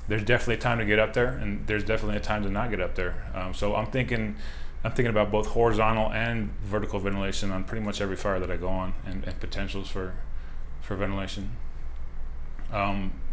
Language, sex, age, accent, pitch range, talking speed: English, male, 20-39, American, 85-110 Hz, 205 wpm